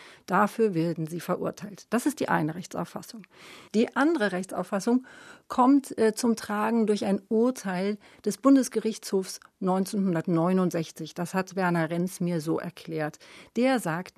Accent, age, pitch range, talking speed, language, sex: German, 40-59, 180-220 Hz, 130 wpm, German, female